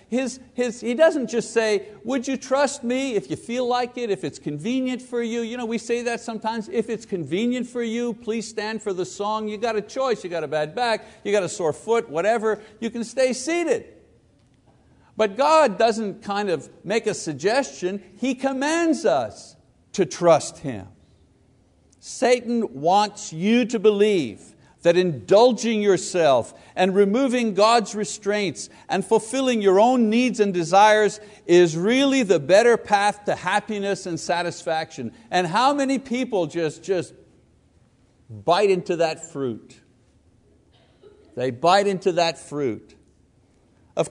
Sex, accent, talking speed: male, American, 155 wpm